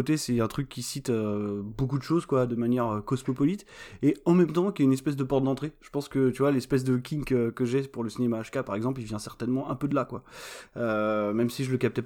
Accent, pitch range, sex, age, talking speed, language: French, 120-140 Hz, male, 20-39, 280 wpm, French